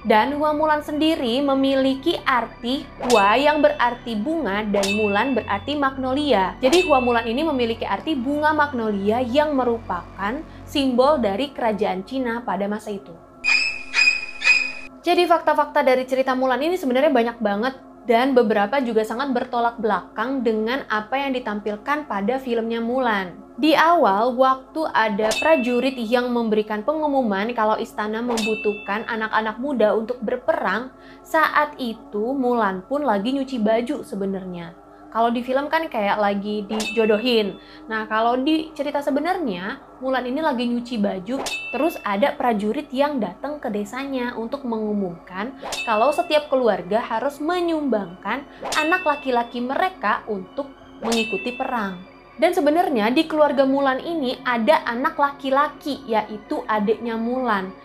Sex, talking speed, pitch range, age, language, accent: female, 130 wpm, 220-290 Hz, 20-39, Indonesian, native